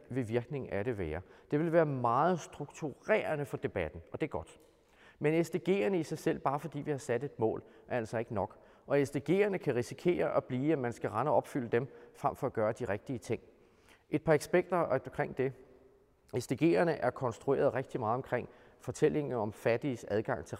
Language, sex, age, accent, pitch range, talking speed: Danish, male, 30-49, native, 115-150 Hz, 200 wpm